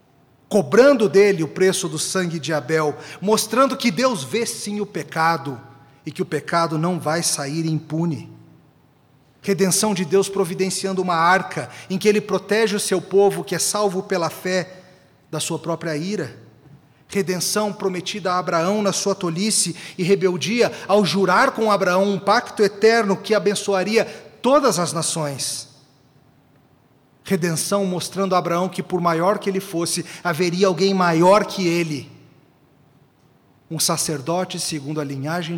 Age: 40-59